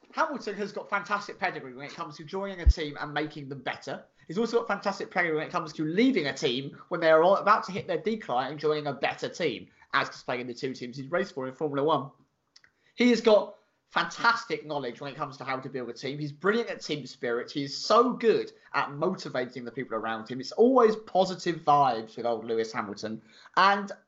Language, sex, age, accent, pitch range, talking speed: English, male, 20-39, British, 150-220 Hz, 225 wpm